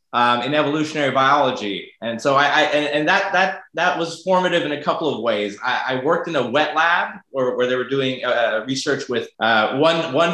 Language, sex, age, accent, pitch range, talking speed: English, male, 20-39, American, 130-170 Hz, 220 wpm